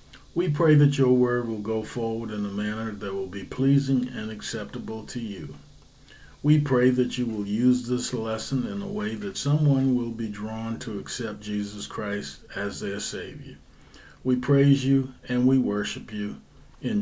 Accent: American